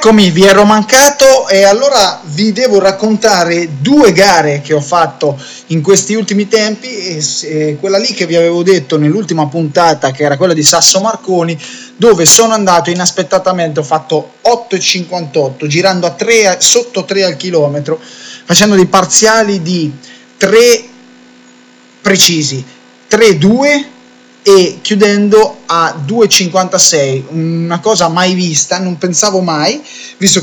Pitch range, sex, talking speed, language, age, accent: 145-195 Hz, male, 130 wpm, Italian, 20-39, native